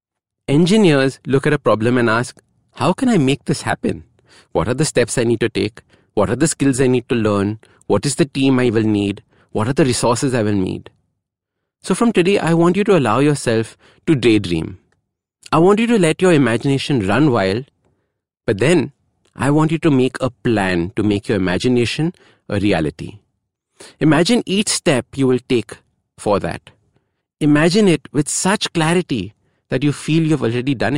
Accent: Indian